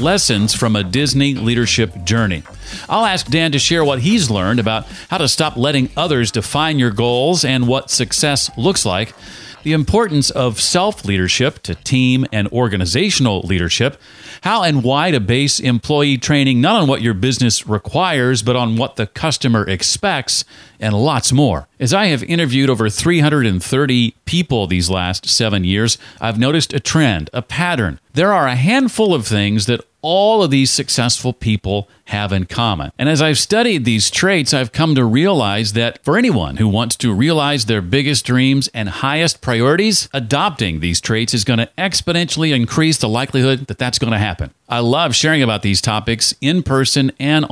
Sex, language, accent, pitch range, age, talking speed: male, English, American, 110-145 Hz, 40-59, 175 wpm